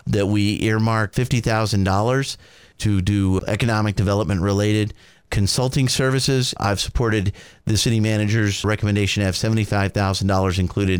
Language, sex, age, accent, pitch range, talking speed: English, male, 40-59, American, 95-115 Hz, 115 wpm